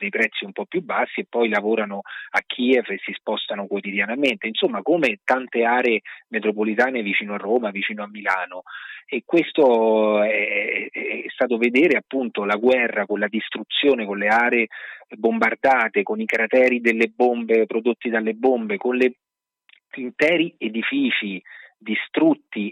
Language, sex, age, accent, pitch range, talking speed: Italian, male, 30-49, native, 105-120 Hz, 145 wpm